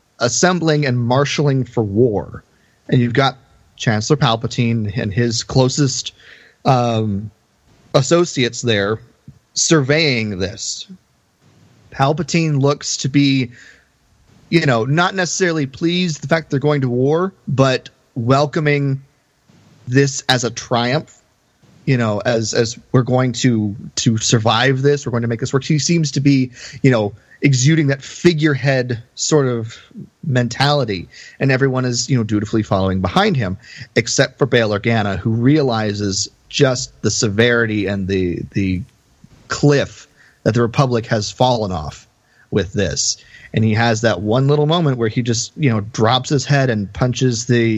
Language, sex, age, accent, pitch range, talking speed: English, male, 30-49, American, 115-140 Hz, 145 wpm